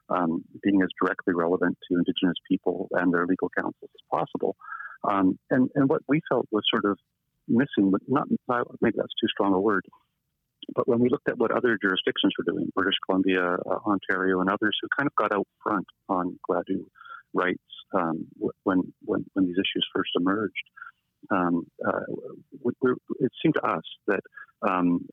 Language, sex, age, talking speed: English, male, 40-59, 175 wpm